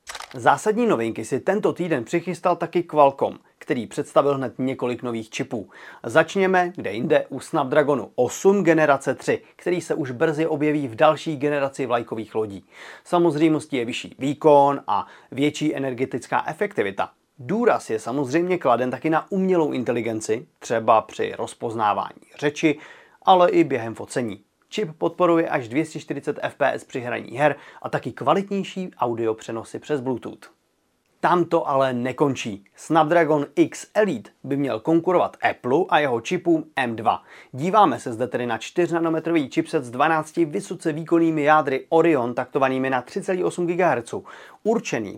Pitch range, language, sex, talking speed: 130-170 Hz, Czech, male, 140 wpm